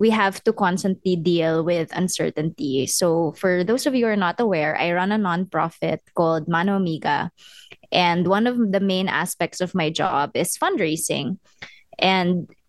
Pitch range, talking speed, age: 175-225 Hz, 165 wpm, 20-39